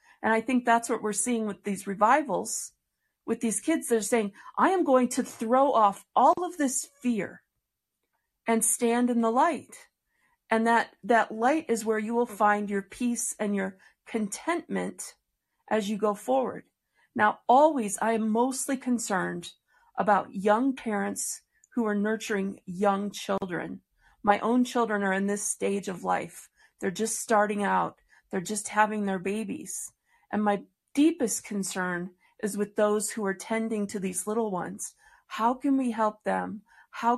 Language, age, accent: English, 40-59, American